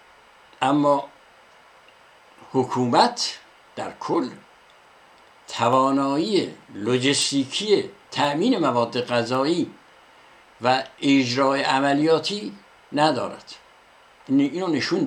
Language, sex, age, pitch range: Persian, male, 60-79, 110-165 Hz